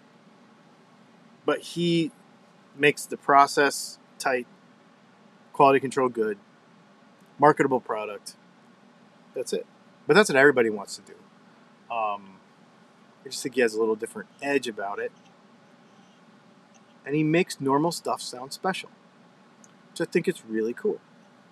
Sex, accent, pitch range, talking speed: male, American, 150-215 Hz, 125 wpm